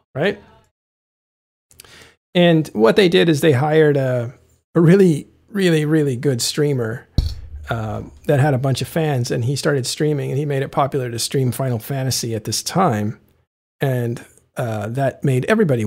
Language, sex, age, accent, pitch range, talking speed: English, male, 50-69, American, 115-160 Hz, 165 wpm